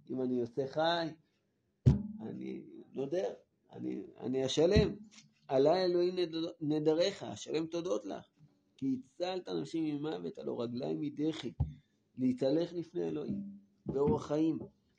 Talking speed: 110 wpm